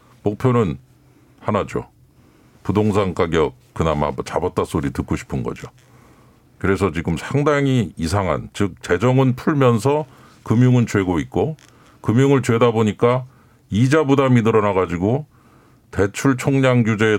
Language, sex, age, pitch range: Korean, male, 50-69, 100-125 Hz